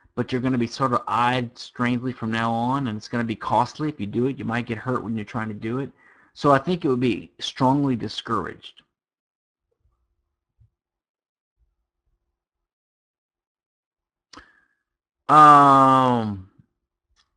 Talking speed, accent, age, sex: 145 wpm, American, 50-69, male